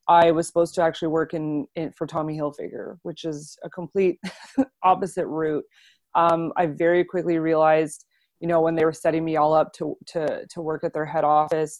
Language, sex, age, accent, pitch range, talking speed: English, female, 20-39, American, 150-165 Hz, 200 wpm